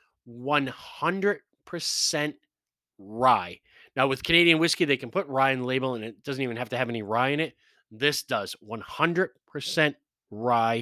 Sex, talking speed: male, 175 wpm